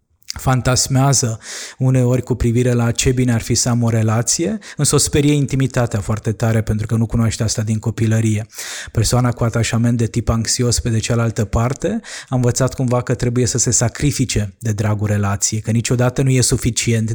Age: 20-39